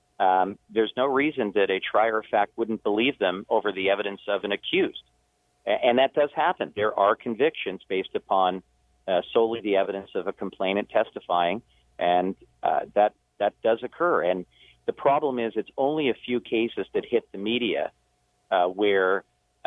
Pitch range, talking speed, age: 95-115 Hz, 175 wpm, 40-59